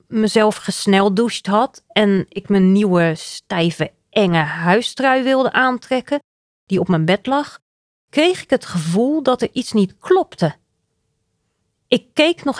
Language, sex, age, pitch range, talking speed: Dutch, female, 30-49, 175-240 Hz, 140 wpm